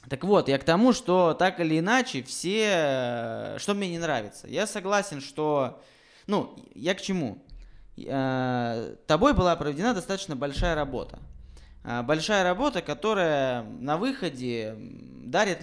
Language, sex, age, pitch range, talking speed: Russian, male, 20-39, 125-175 Hz, 125 wpm